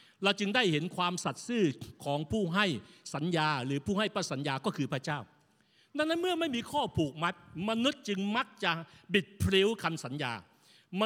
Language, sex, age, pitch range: Thai, male, 60-79, 170-220 Hz